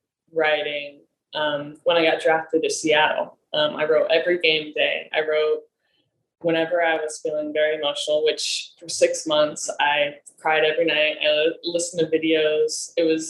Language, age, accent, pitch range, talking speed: English, 10-29, American, 160-225 Hz, 160 wpm